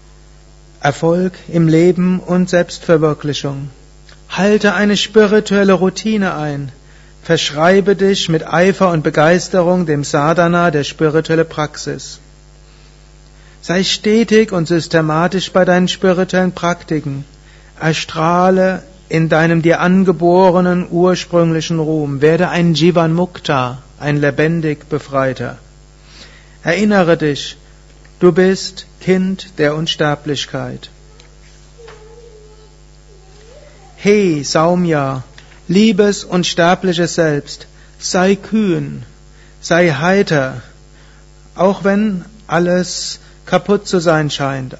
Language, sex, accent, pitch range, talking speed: German, male, German, 150-185 Hz, 90 wpm